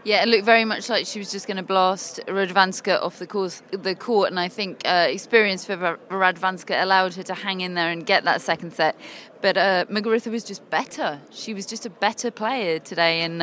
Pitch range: 175-205 Hz